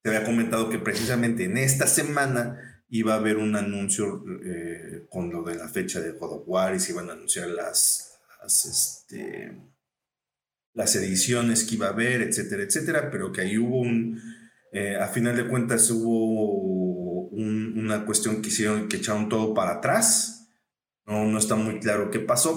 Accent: Mexican